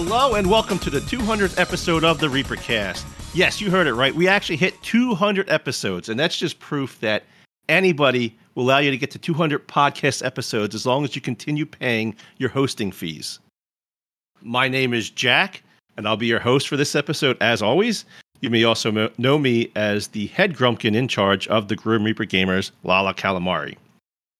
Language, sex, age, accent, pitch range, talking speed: English, male, 40-59, American, 110-150 Hz, 185 wpm